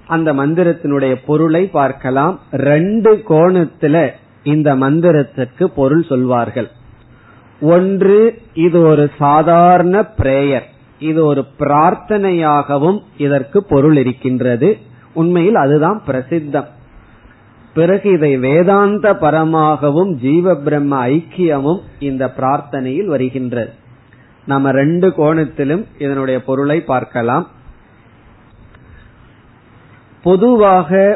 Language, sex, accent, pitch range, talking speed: Tamil, male, native, 130-170 Hz, 80 wpm